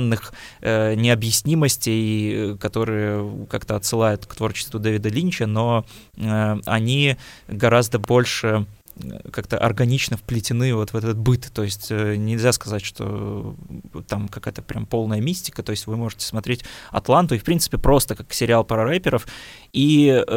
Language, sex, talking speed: Russian, male, 130 wpm